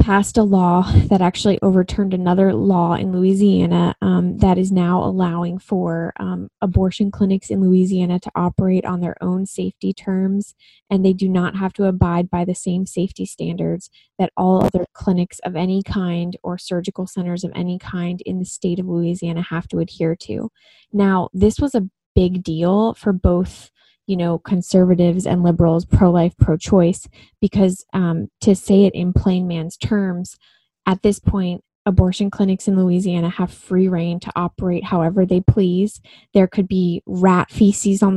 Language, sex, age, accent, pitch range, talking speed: English, female, 20-39, American, 175-195 Hz, 170 wpm